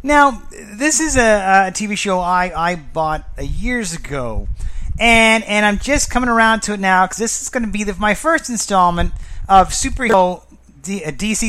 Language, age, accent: English, 30-49, American